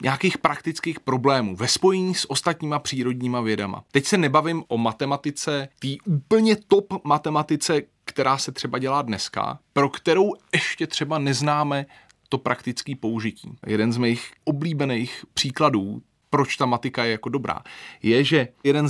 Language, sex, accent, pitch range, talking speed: Czech, male, native, 120-160 Hz, 145 wpm